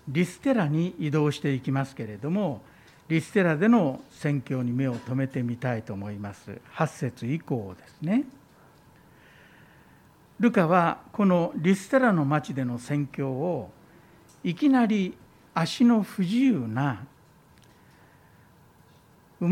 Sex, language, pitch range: male, Japanese, 135-205 Hz